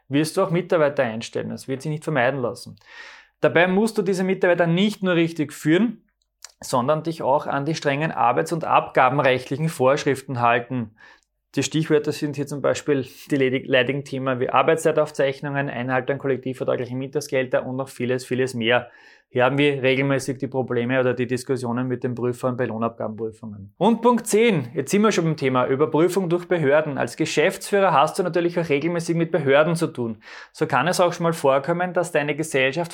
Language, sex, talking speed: German, male, 175 wpm